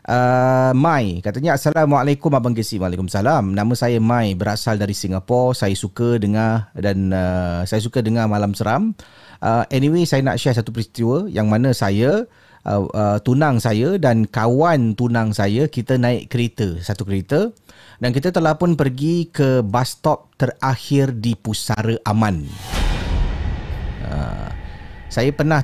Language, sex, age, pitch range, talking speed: Malay, male, 30-49, 95-120 Hz, 145 wpm